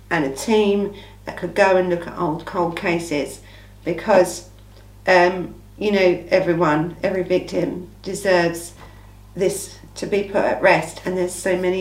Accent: British